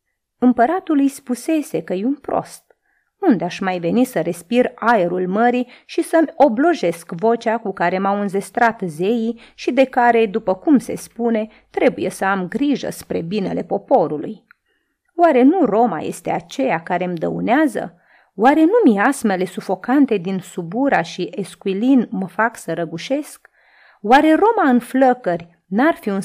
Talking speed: 145 wpm